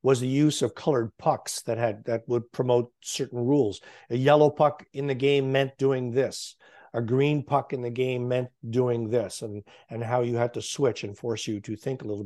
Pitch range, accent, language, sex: 120-145 Hz, American, English, male